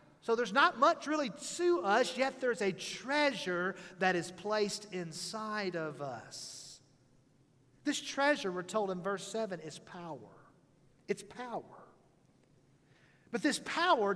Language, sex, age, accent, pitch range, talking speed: English, male, 40-59, American, 170-245 Hz, 130 wpm